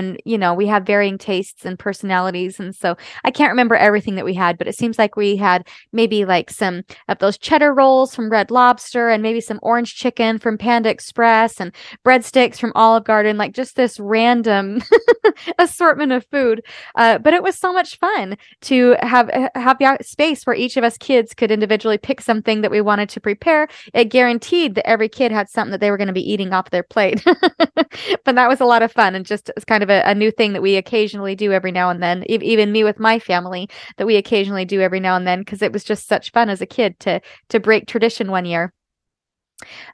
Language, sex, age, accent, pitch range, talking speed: English, female, 20-39, American, 200-255 Hz, 225 wpm